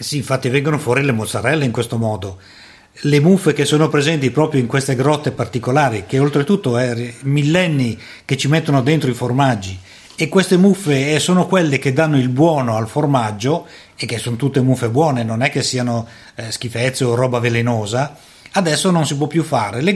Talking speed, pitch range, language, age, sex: 185 wpm, 120-150 Hz, Italian, 30-49, male